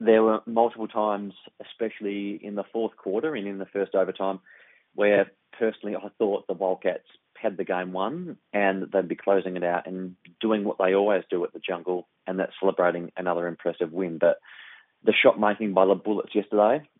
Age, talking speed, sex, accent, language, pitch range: 30-49, 185 wpm, male, Australian, English, 95-105 Hz